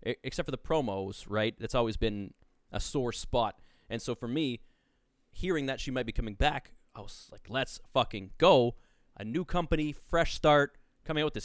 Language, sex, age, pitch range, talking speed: English, male, 20-39, 115-150 Hz, 190 wpm